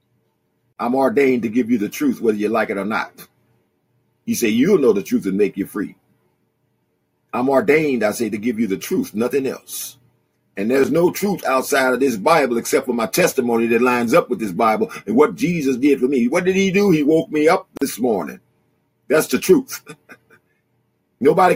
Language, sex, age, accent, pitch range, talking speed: English, male, 50-69, American, 135-195 Hz, 200 wpm